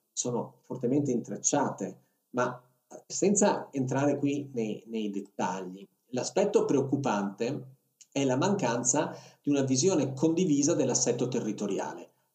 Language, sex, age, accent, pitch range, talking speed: Italian, male, 50-69, native, 120-150 Hz, 100 wpm